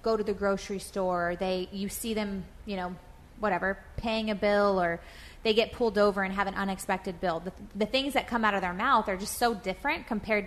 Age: 20-39